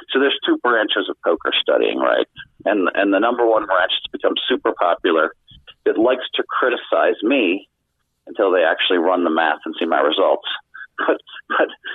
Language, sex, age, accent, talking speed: English, male, 40-59, American, 175 wpm